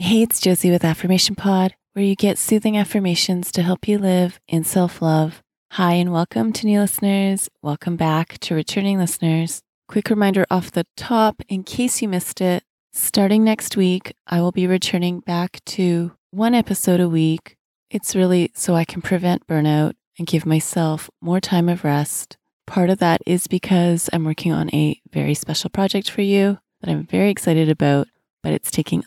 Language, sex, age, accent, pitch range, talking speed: English, female, 30-49, American, 155-185 Hz, 180 wpm